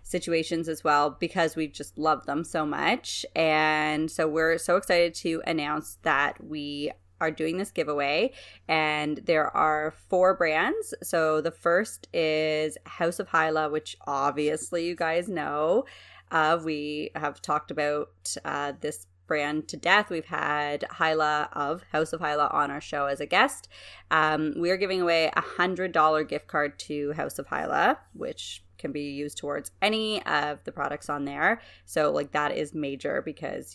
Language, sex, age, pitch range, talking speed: English, female, 30-49, 145-165 Hz, 165 wpm